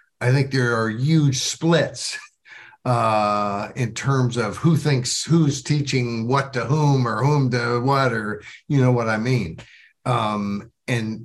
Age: 60-79